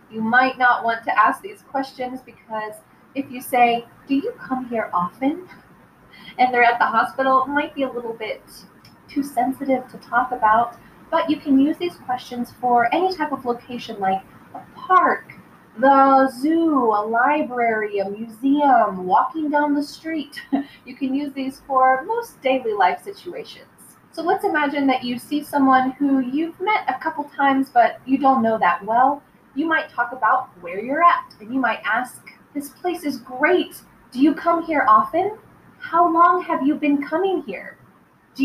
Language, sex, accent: English, female, American